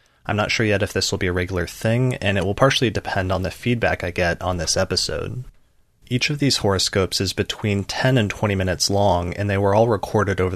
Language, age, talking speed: English, 30-49, 235 wpm